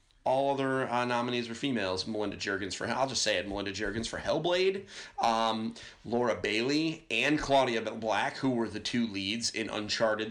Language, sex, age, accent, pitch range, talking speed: English, male, 30-49, American, 105-140 Hz, 175 wpm